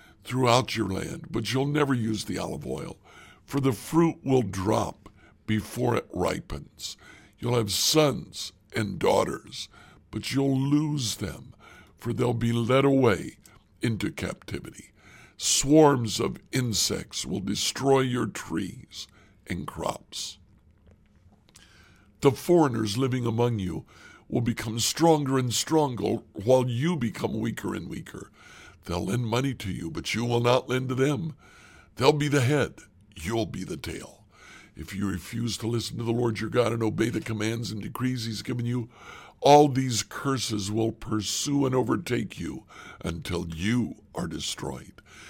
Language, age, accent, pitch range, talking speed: English, 60-79, American, 105-130 Hz, 145 wpm